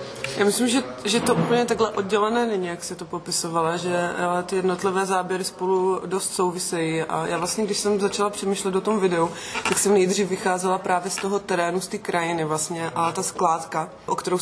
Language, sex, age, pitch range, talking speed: Czech, female, 20-39, 165-185 Hz, 195 wpm